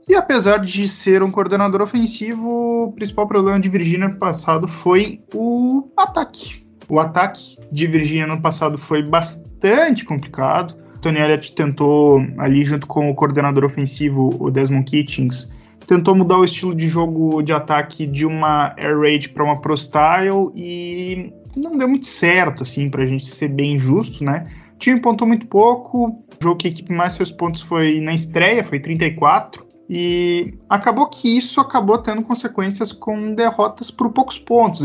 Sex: male